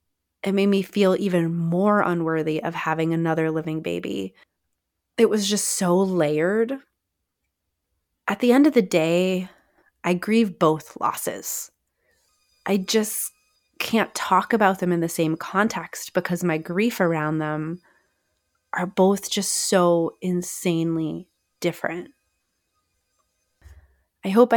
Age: 30-49